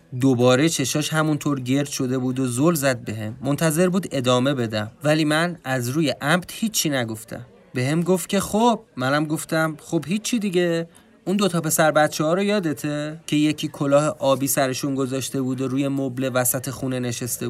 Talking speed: 180 wpm